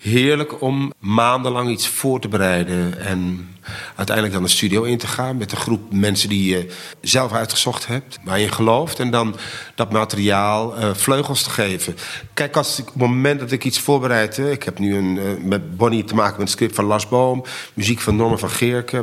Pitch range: 100-125 Hz